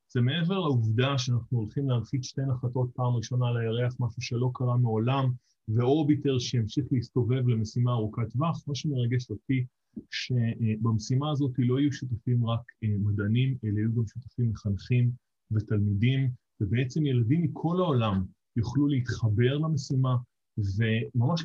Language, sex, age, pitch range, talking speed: Hebrew, male, 20-39, 115-140 Hz, 125 wpm